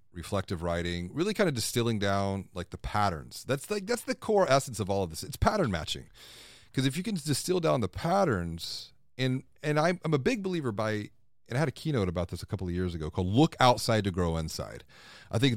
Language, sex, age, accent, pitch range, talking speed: English, male, 40-59, American, 95-125 Hz, 230 wpm